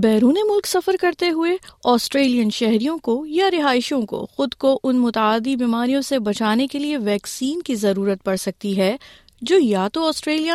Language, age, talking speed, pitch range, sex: Urdu, 30-49, 170 wpm, 225-295 Hz, female